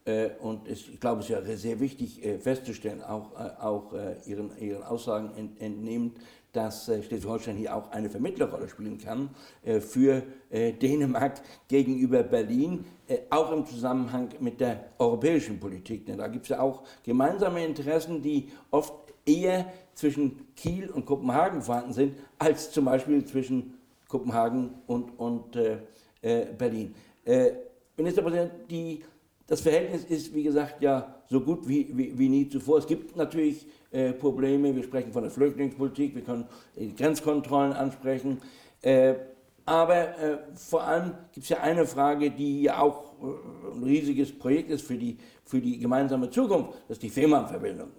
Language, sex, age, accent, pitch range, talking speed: Danish, male, 60-79, German, 125-155 Hz, 165 wpm